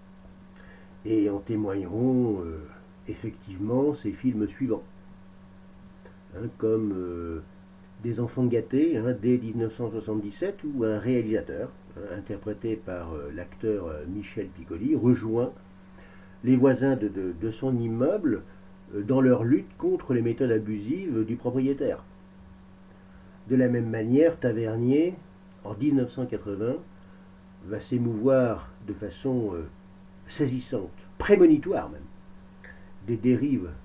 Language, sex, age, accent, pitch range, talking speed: French, male, 50-69, French, 95-115 Hz, 110 wpm